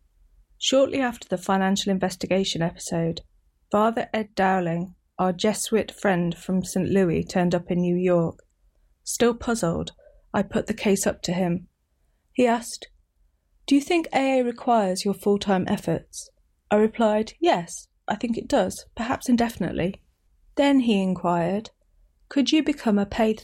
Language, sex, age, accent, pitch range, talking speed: English, female, 30-49, British, 180-225 Hz, 145 wpm